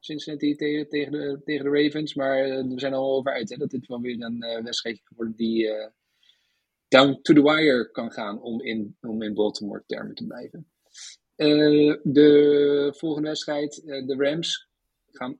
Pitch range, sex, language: 130-160 Hz, male, Dutch